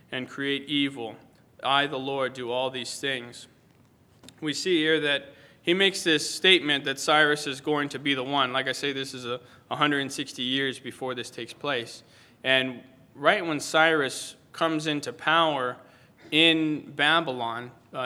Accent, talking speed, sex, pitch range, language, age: American, 160 wpm, male, 125-145 Hz, English, 20-39